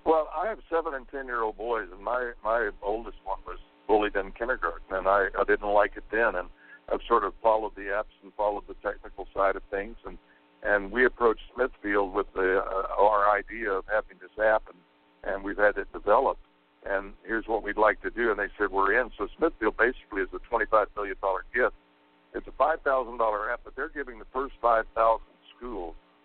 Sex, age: male, 60-79